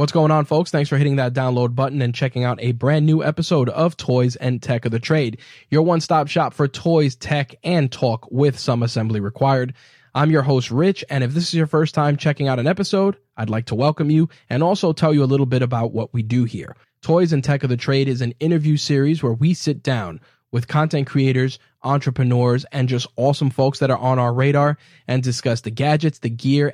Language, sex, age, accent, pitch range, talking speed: English, male, 10-29, American, 125-145 Hz, 230 wpm